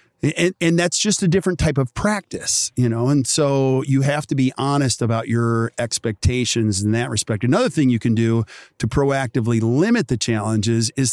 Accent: American